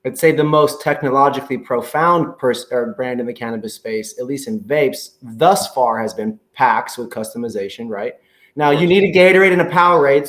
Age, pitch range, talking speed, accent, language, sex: 30-49, 130-175 Hz, 180 wpm, American, English, male